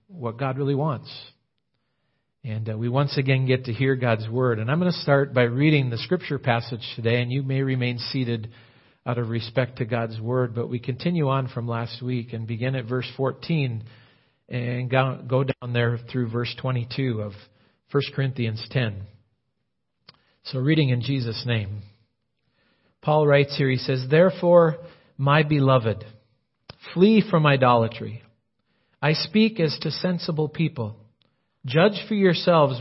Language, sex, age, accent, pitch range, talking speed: English, male, 40-59, American, 120-155 Hz, 155 wpm